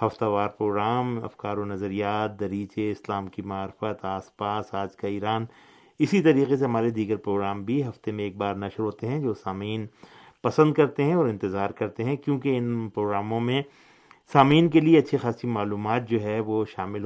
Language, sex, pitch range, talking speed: Urdu, male, 105-125 Hz, 185 wpm